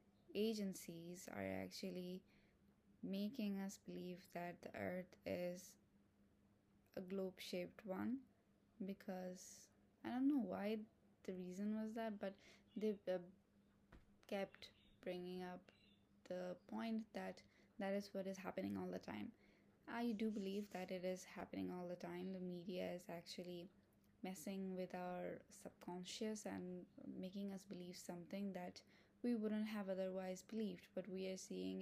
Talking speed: 135 wpm